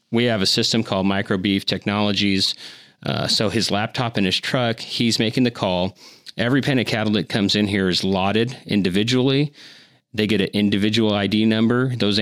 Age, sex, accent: 30-49, male, American